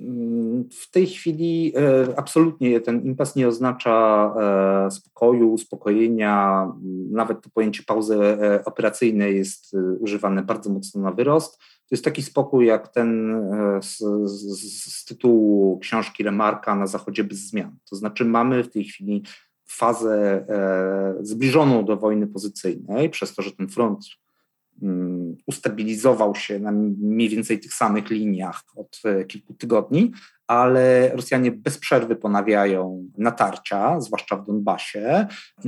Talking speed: 125 wpm